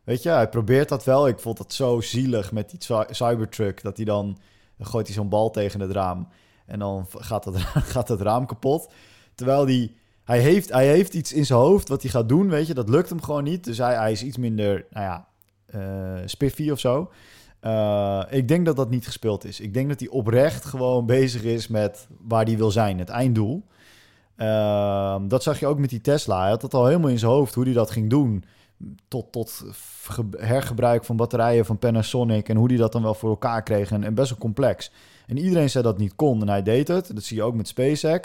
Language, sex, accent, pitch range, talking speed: Dutch, male, Dutch, 105-130 Hz, 230 wpm